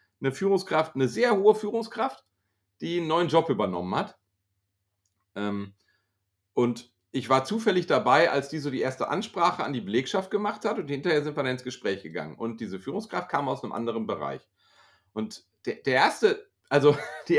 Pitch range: 130-200 Hz